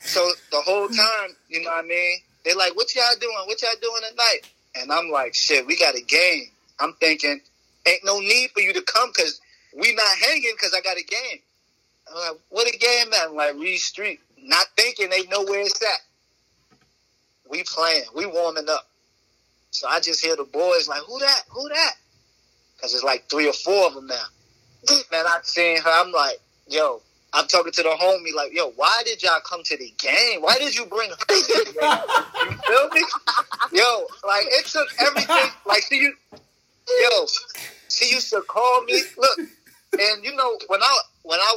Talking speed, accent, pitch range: 200 wpm, American, 165-270 Hz